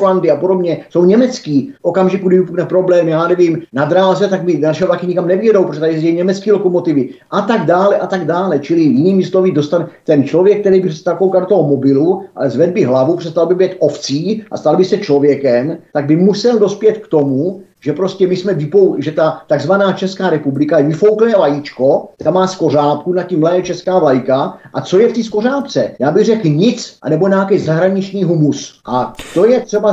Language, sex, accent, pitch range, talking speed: Czech, male, native, 135-180 Hz, 195 wpm